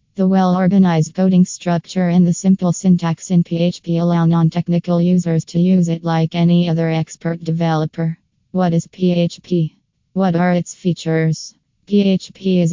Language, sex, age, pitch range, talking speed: English, female, 20-39, 165-180 Hz, 140 wpm